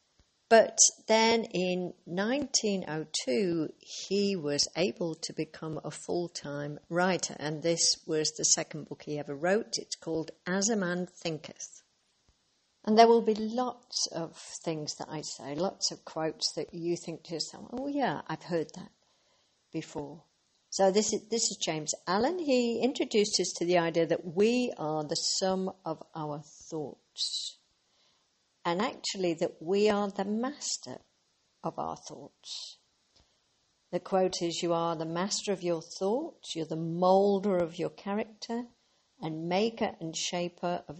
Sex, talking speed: female, 150 wpm